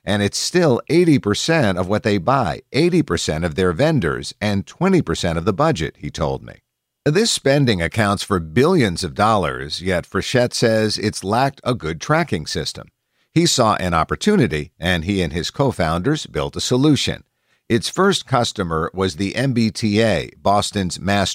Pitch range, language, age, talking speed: 85-120 Hz, English, 50-69, 155 wpm